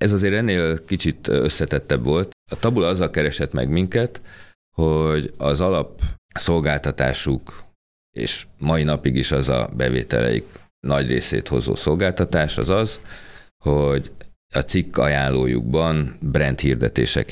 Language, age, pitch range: Hungarian, 30-49, 65-80 Hz